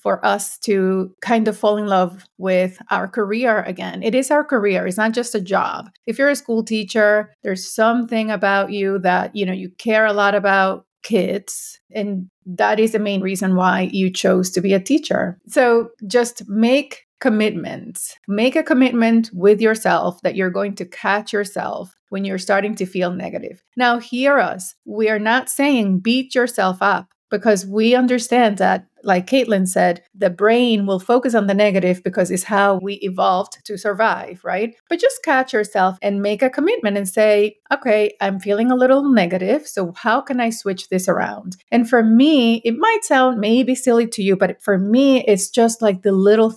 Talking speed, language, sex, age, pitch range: 190 wpm, English, female, 30-49, 195-235 Hz